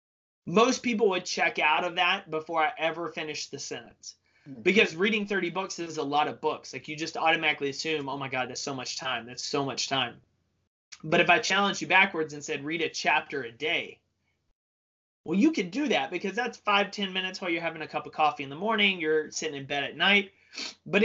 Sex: male